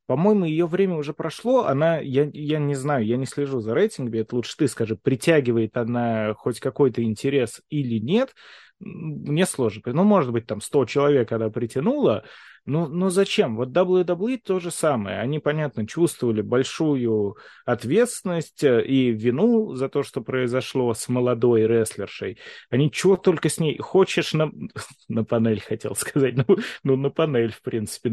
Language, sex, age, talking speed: Russian, male, 20-39, 160 wpm